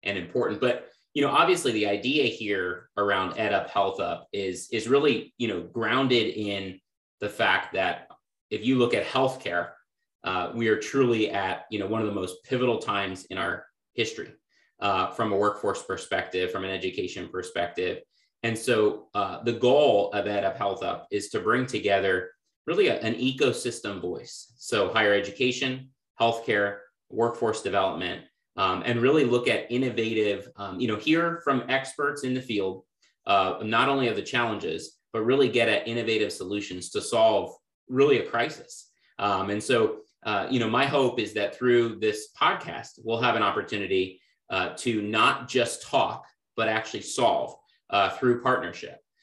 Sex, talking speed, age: male, 170 wpm, 30-49